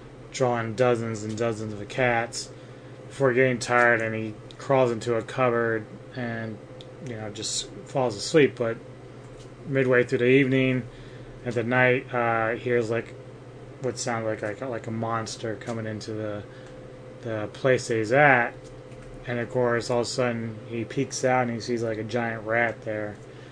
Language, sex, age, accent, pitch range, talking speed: English, male, 20-39, American, 115-130 Hz, 165 wpm